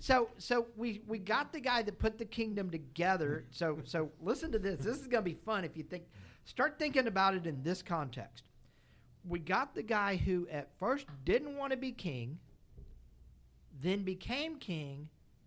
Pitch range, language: 145-225 Hz, English